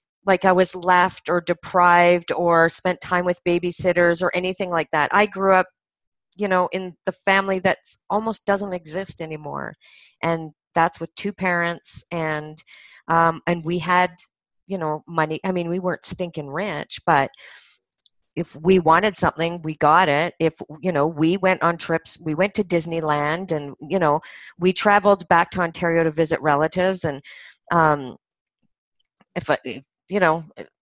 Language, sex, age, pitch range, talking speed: English, female, 40-59, 160-190 Hz, 160 wpm